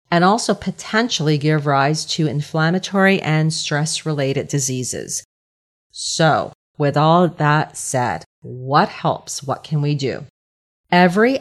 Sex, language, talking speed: female, English, 115 wpm